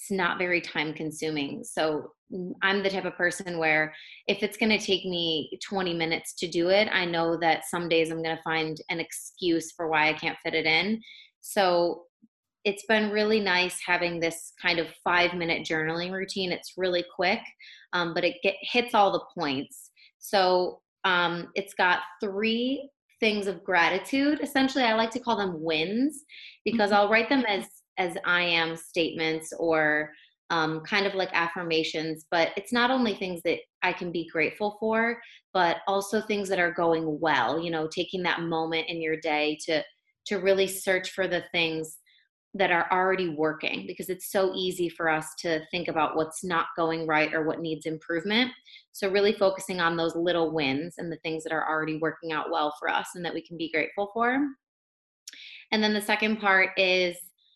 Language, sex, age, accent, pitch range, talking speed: English, female, 20-39, American, 160-200 Hz, 185 wpm